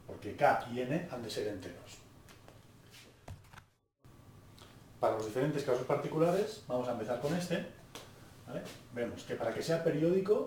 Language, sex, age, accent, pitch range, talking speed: Spanish, male, 40-59, Spanish, 115-150 Hz, 145 wpm